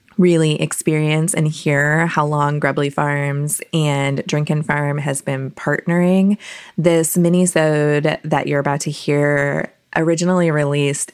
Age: 20-39